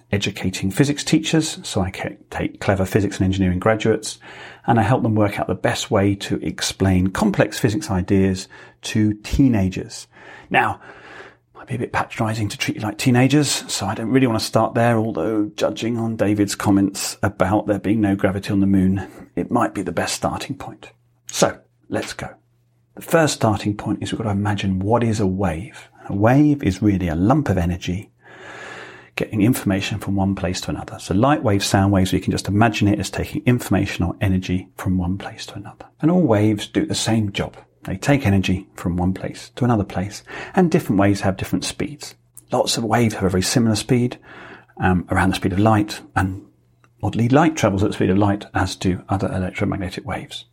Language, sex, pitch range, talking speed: English, male, 95-115 Hz, 200 wpm